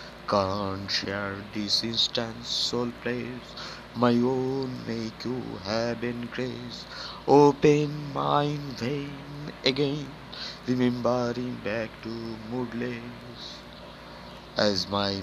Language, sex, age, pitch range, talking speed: Bengali, male, 60-79, 110-125 Hz, 95 wpm